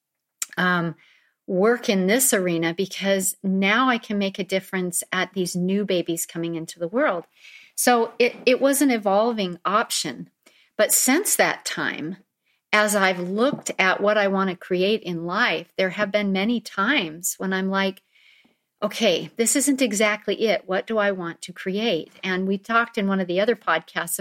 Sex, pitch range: female, 190-240 Hz